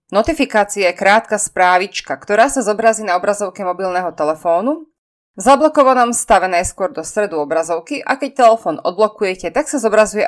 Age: 20-39